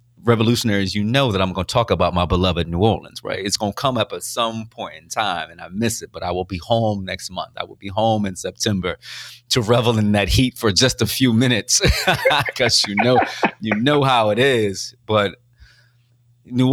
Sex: male